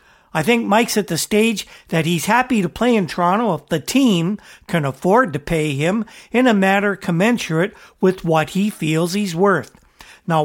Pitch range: 160-195 Hz